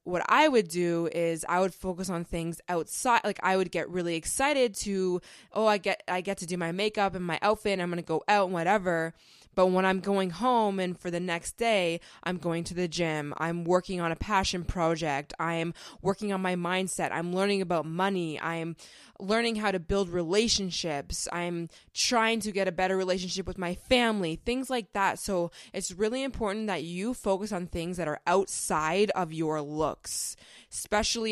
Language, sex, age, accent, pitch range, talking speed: English, female, 20-39, American, 170-200 Hz, 200 wpm